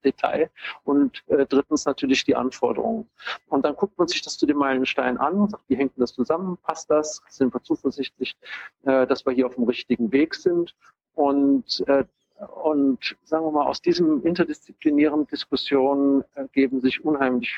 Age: 50-69